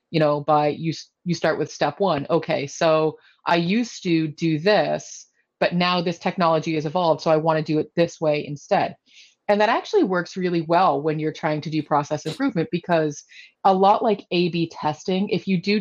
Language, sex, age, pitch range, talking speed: English, female, 30-49, 155-190 Hz, 200 wpm